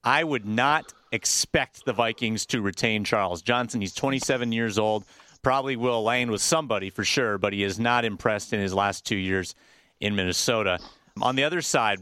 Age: 30-49